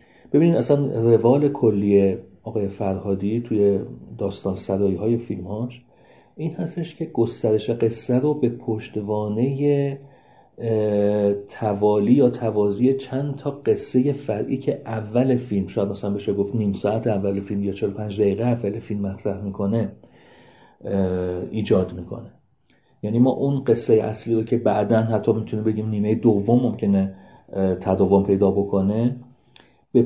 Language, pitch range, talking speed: Persian, 100-125 Hz, 130 wpm